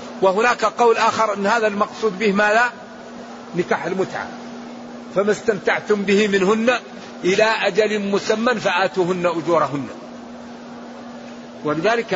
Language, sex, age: Arabic, male, 50-69